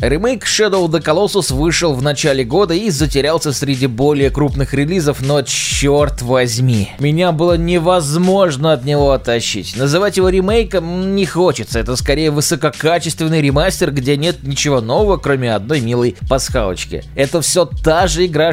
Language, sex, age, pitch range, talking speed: Russian, male, 20-39, 140-175 Hz, 150 wpm